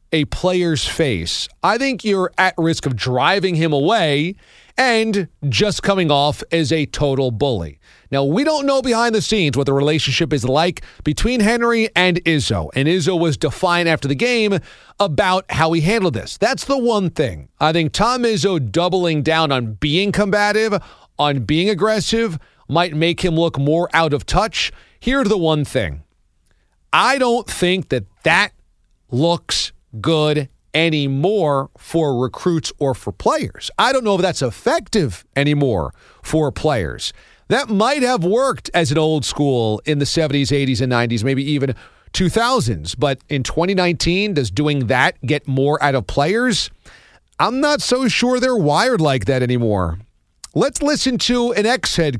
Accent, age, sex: American, 40-59, male